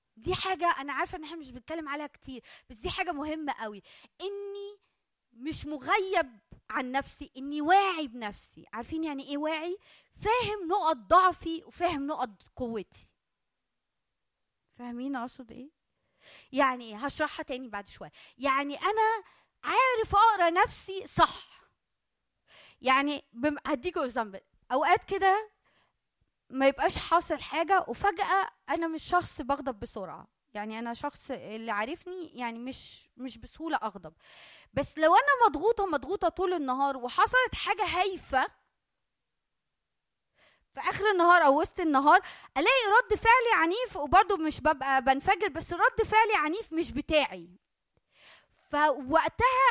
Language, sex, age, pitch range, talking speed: Arabic, female, 20-39, 265-380 Hz, 125 wpm